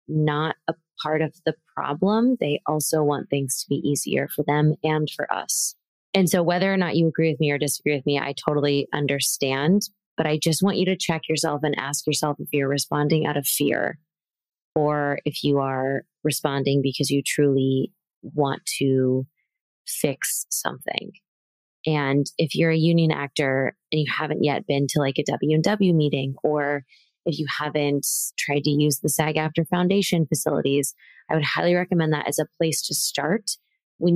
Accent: American